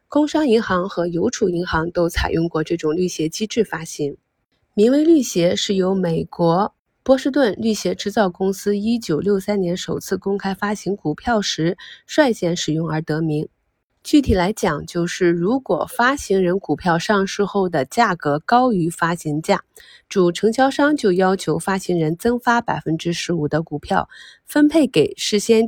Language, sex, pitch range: Chinese, female, 170-225 Hz